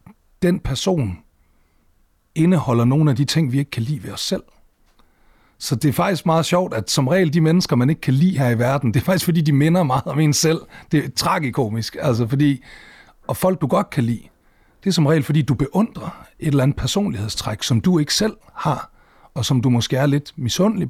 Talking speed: 215 wpm